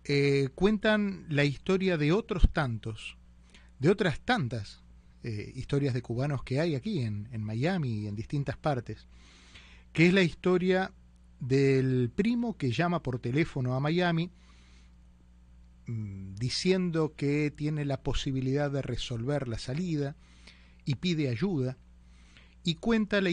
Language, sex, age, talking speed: Spanish, male, 30-49, 130 wpm